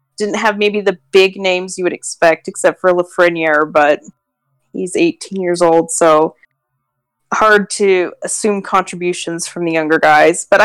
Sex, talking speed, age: female, 150 wpm, 20-39